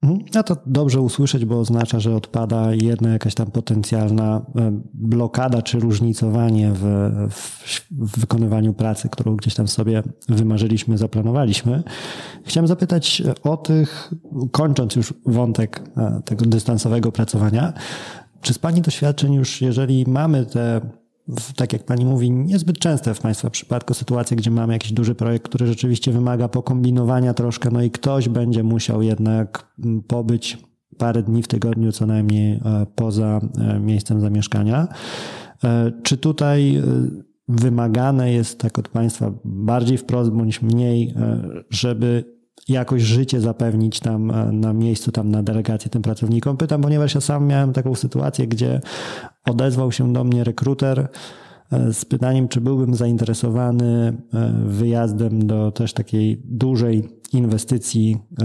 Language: Polish